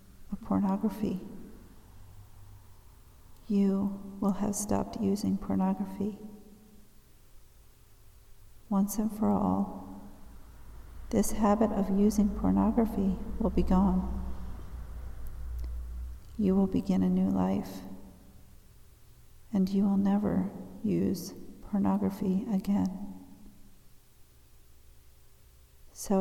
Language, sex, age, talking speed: English, female, 50-69, 80 wpm